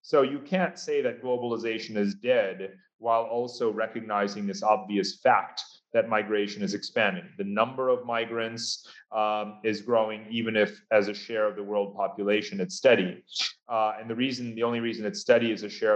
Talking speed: 175 wpm